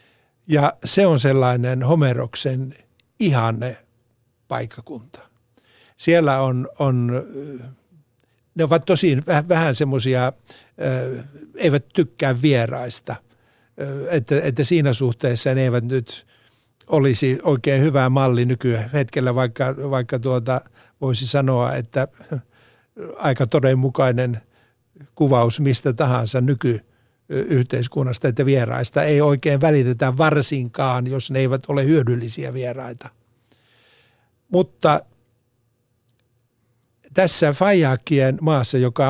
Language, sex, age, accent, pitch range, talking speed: Finnish, male, 60-79, native, 120-145 Hz, 95 wpm